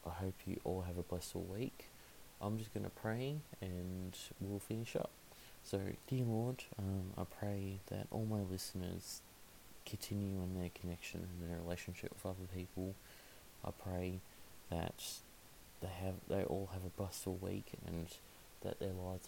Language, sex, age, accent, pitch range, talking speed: English, male, 30-49, Australian, 85-100 Hz, 160 wpm